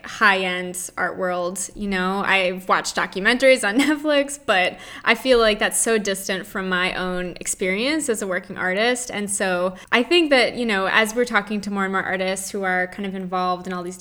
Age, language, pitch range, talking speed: 20-39, English, 190-230 Hz, 205 wpm